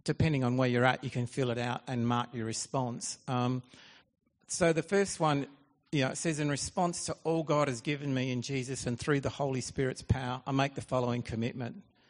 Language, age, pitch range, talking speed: English, 50-69, 125-150 Hz, 220 wpm